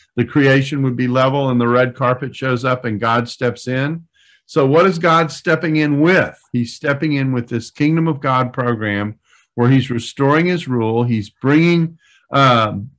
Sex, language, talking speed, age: male, English, 180 wpm, 50-69